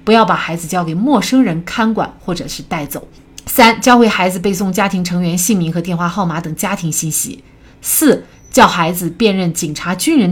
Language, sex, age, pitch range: Chinese, female, 30-49, 170-230 Hz